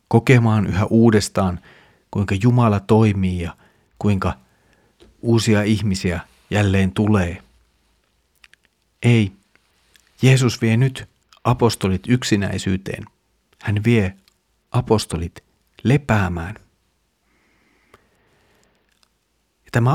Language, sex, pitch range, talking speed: Finnish, male, 95-125 Hz, 70 wpm